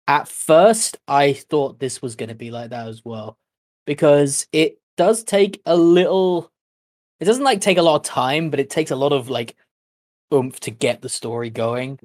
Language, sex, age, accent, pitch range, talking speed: English, male, 20-39, British, 120-150 Hz, 200 wpm